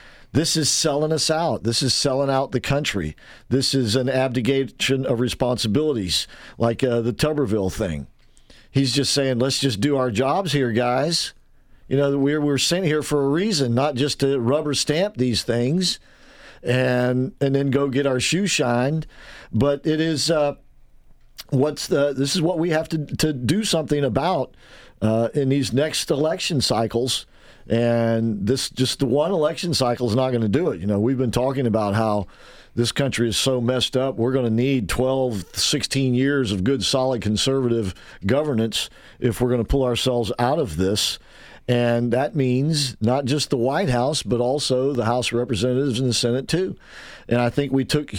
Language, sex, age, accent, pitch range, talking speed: English, male, 50-69, American, 120-140 Hz, 185 wpm